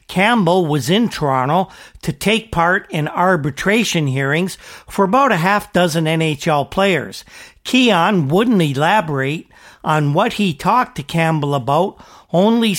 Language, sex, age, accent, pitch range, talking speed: English, male, 50-69, American, 155-200 Hz, 130 wpm